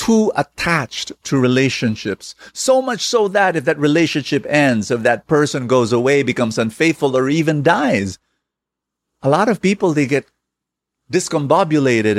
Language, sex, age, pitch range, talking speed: English, male, 50-69, 120-185 Hz, 145 wpm